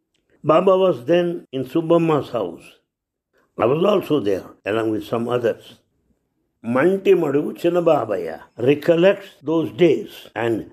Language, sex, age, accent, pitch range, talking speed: English, male, 60-79, Indian, 130-175 Hz, 115 wpm